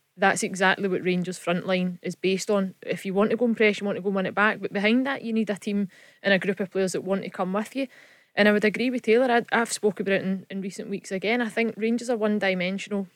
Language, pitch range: English, 190-225 Hz